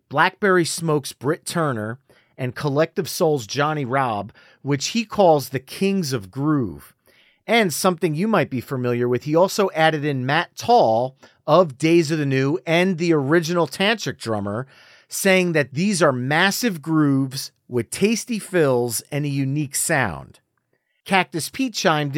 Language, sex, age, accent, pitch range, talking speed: English, male, 40-59, American, 130-185 Hz, 150 wpm